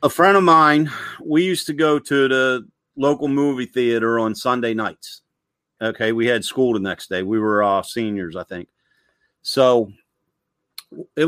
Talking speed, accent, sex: 165 wpm, American, male